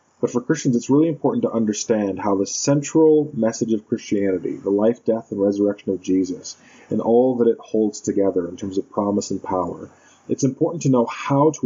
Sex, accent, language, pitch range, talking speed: male, American, English, 105-140 Hz, 200 wpm